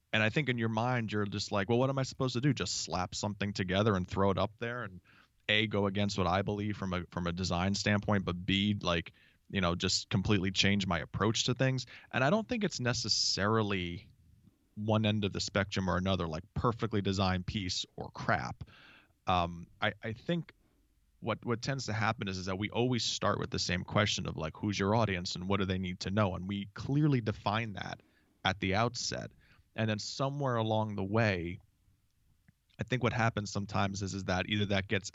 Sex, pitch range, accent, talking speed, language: male, 95-110 Hz, American, 215 wpm, English